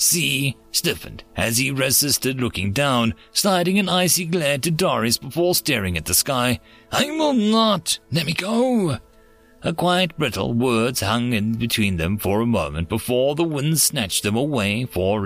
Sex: male